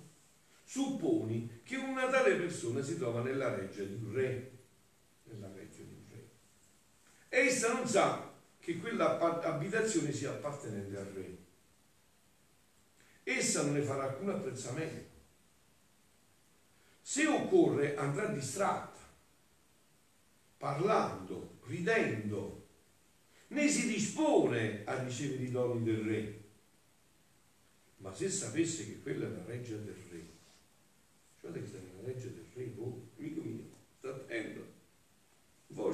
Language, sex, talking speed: Italian, male, 115 wpm